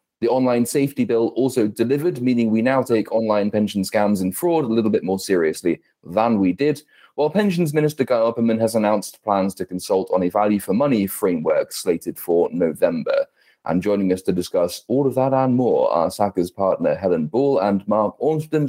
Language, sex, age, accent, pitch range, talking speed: English, male, 30-49, British, 100-130 Hz, 185 wpm